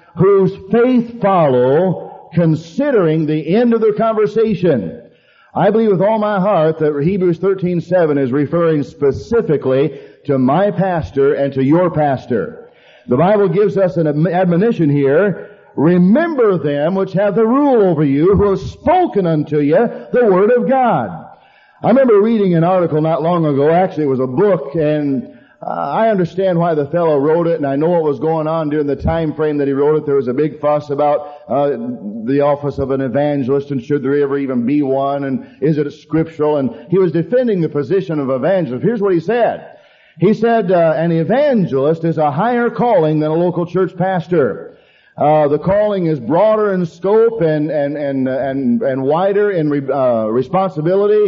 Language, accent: English, American